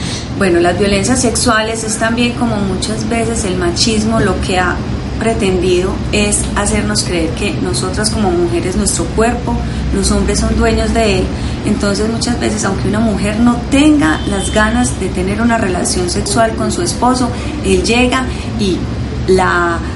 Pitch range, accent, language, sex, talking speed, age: 190-245 Hz, Colombian, Spanish, female, 155 wpm, 30-49